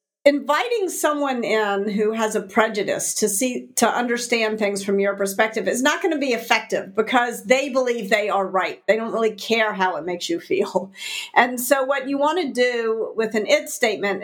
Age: 50-69